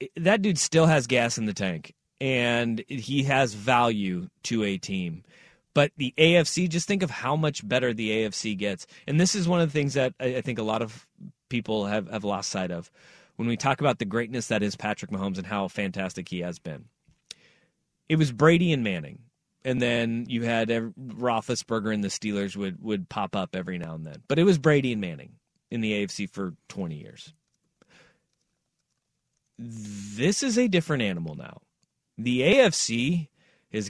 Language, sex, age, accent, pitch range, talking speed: English, male, 30-49, American, 105-145 Hz, 185 wpm